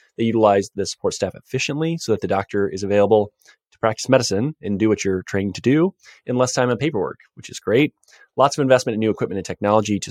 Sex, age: male, 20-39